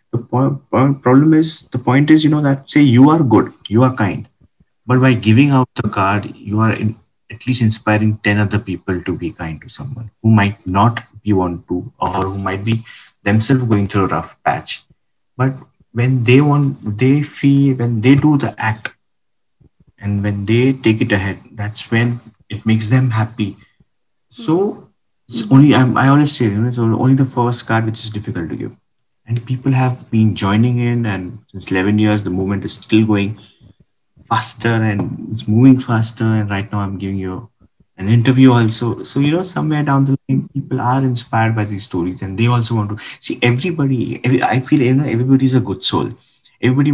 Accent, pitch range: Indian, 105-130 Hz